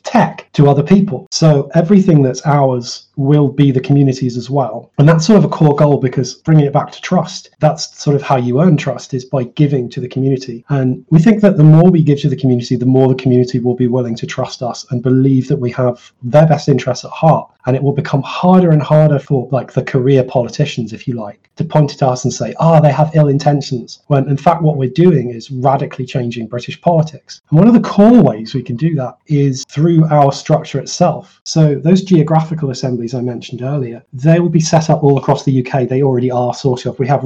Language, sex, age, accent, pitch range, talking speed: English, male, 30-49, British, 130-160 Hz, 235 wpm